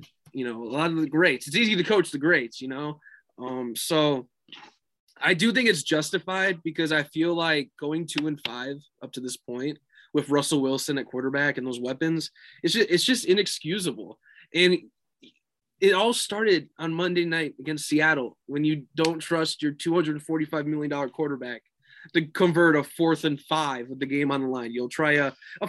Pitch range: 135-165 Hz